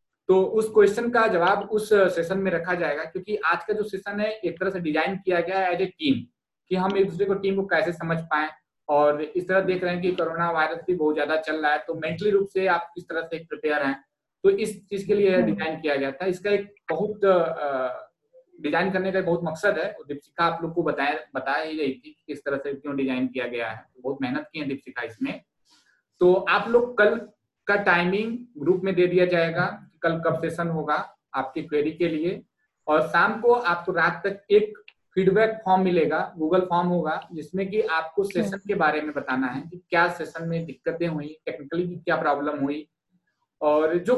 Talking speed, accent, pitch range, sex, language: 215 wpm, native, 155-200 Hz, male, Hindi